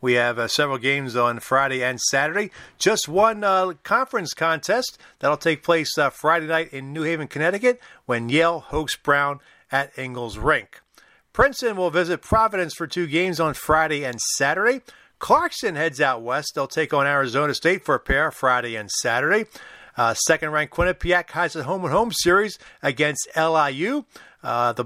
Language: English